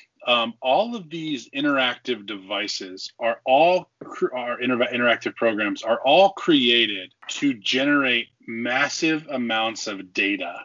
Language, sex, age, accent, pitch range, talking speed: English, male, 20-39, American, 110-150 Hz, 125 wpm